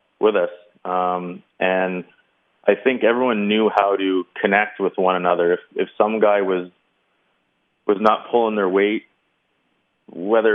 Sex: male